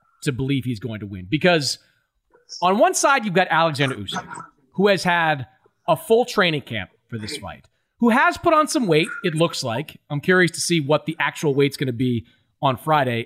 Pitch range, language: 140-200 Hz, English